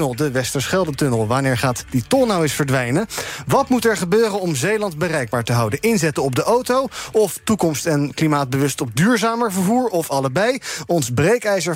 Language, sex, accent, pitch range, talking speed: Dutch, male, Dutch, 125-185 Hz, 170 wpm